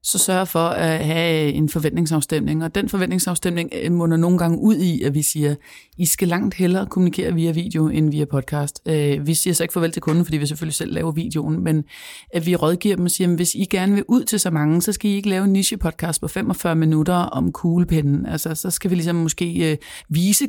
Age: 30-49